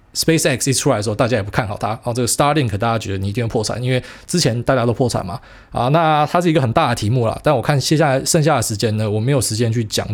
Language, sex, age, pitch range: Chinese, male, 20-39, 110-140 Hz